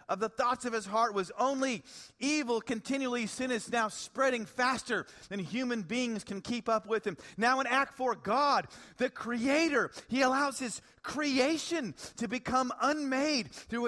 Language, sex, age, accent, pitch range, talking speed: English, male, 40-59, American, 190-255 Hz, 165 wpm